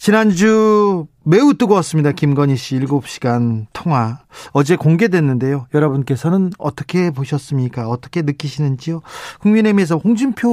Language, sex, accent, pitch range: Korean, male, native, 140-195 Hz